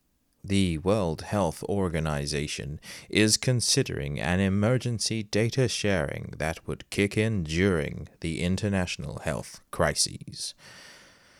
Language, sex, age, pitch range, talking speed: English, male, 30-49, 85-130 Hz, 100 wpm